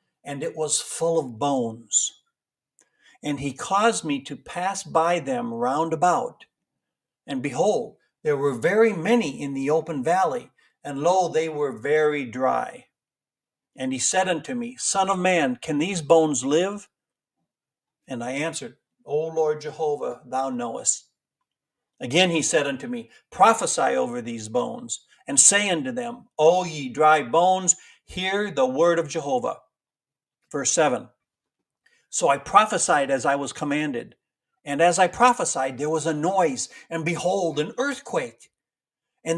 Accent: American